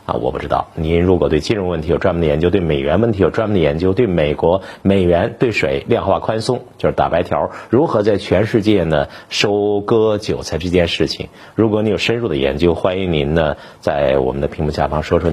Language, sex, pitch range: Chinese, male, 85-115 Hz